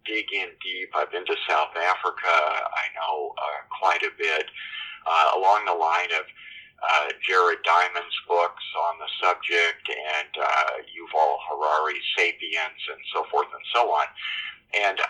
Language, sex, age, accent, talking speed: English, male, 50-69, American, 150 wpm